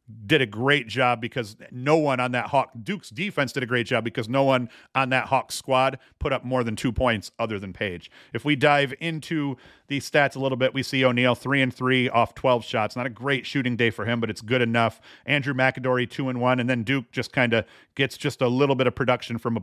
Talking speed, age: 250 wpm, 40-59